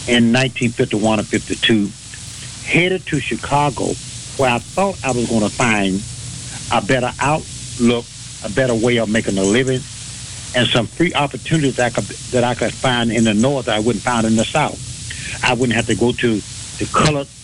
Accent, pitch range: American, 115-135 Hz